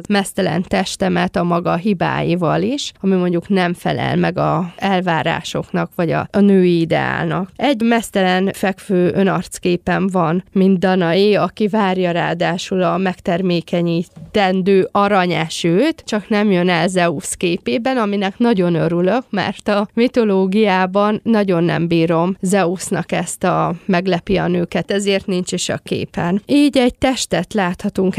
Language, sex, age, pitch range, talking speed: Hungarian, female, 20-39, 180-205 Hz, 130 wpm